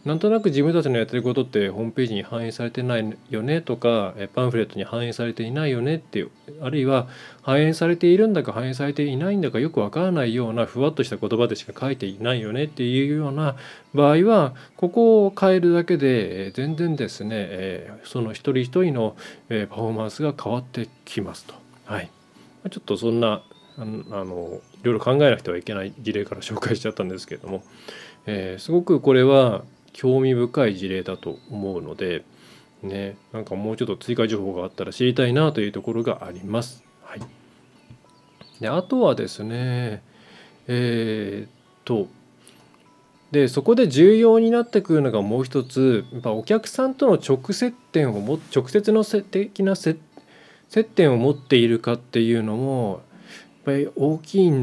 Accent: native